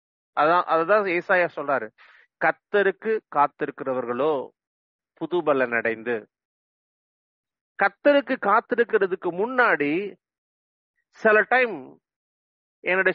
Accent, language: Indian, English